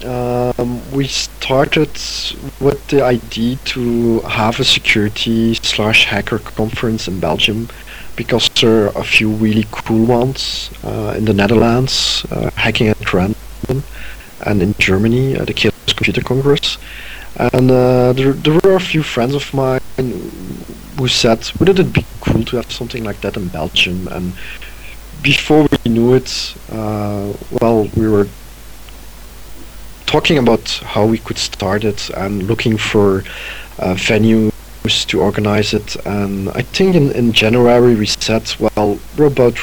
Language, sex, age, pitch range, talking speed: English, male, 50-69, 105-130 Hz, 145 wpm